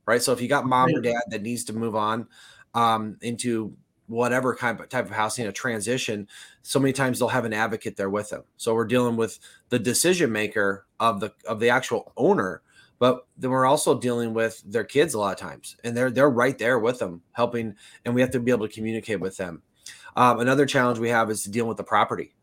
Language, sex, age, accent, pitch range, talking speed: English, male, 20-39, American, 110-130 Hz, 225 wpm